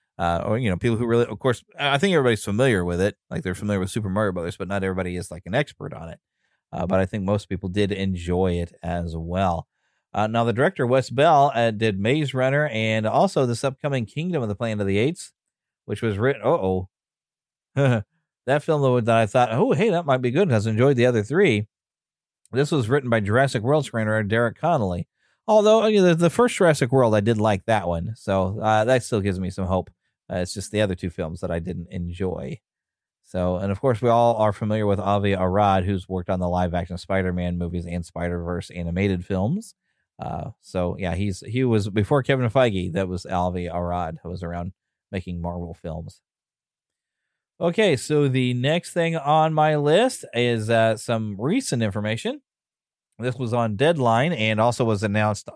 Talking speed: 200 wpm